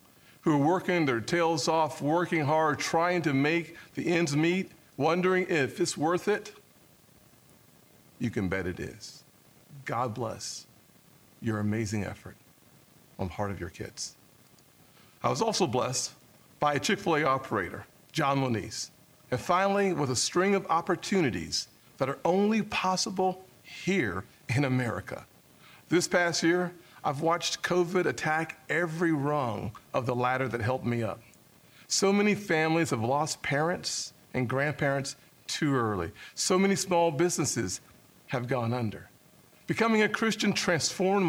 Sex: male